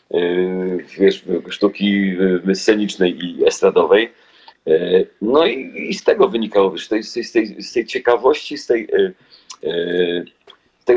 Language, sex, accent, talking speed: Polish, male, native, 95 wpm